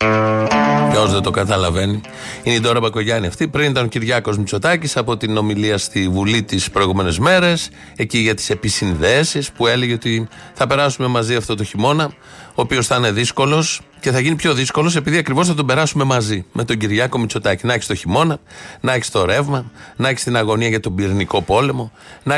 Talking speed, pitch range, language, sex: 195 wpm, 110-145 Hz, Greek, male